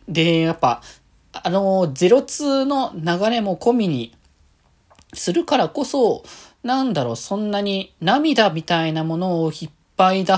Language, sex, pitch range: Japanese, male, 145-215 Hz